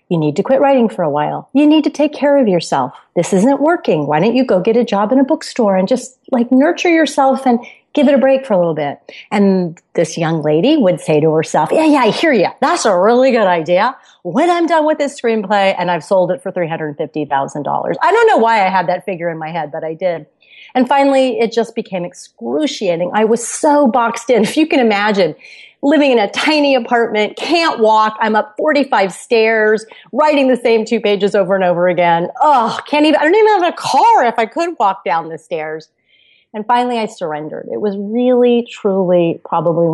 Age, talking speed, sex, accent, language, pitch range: 30-49, 220 wpm, female, American, English, 175-265 Hz